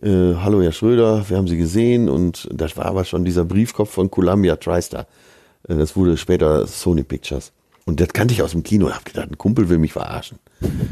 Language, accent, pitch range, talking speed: German, German, 85-115 Hz, 205 wpm